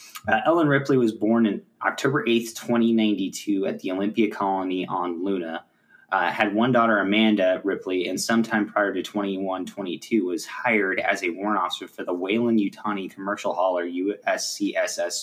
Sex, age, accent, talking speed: male, 20-39, American, 160 wpm